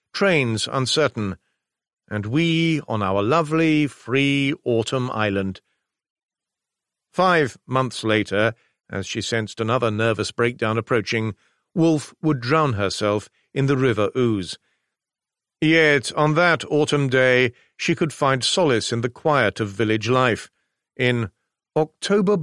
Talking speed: 120 wpm